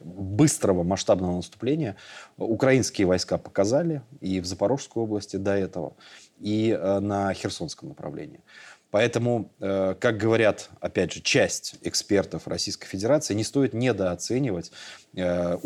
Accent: native